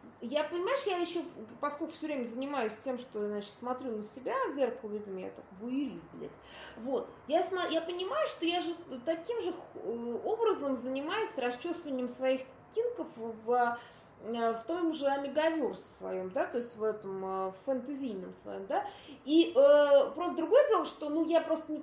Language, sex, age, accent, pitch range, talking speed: Russian, female, 20-39, native, 240-330 Hz, 170 wpm